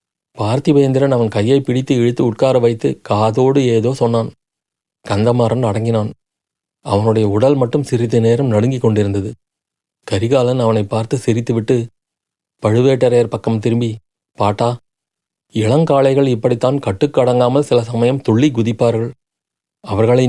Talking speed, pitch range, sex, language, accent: 105 wpm, 115-140 Hz, male, Tamil, native